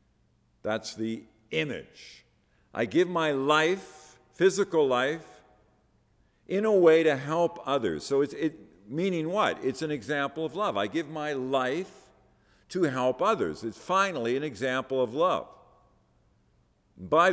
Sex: male